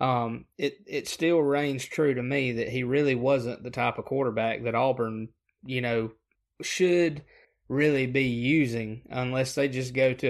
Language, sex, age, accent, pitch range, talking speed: English, male, 20-39, American, 115-130 Hz, 170 wpm